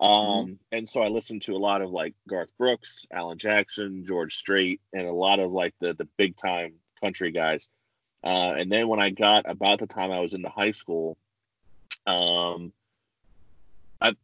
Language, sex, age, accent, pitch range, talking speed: English, male, 30-49, American, 90-110 Hz, 185 wpm